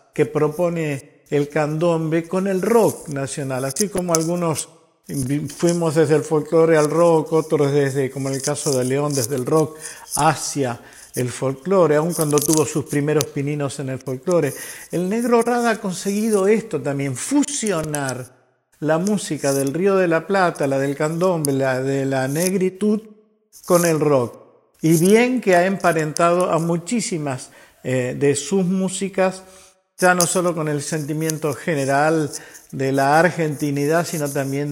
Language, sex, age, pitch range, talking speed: Spanish, male, 50-69, 140-190 Hz, 150 wpm